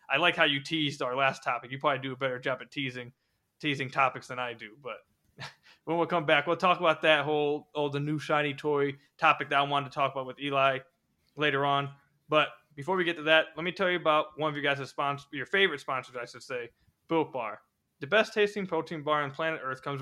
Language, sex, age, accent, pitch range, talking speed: English, male, 20-39, American, 140-170 Hz, 240 wpm